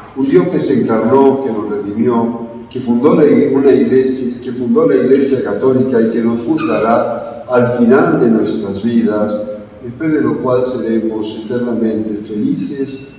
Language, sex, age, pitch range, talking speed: English, male, 50-69, 105-130 Hz, 135 wpm